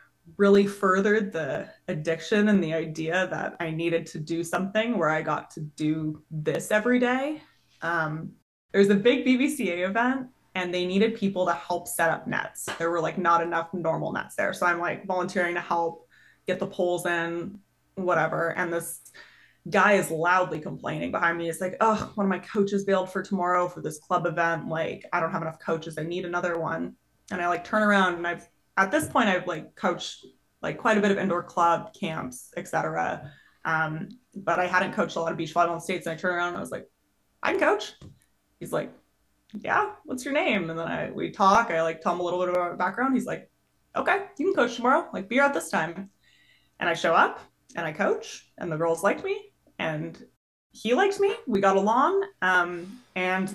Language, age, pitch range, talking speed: English, 20-39, 170-210 Hz, 210 wpm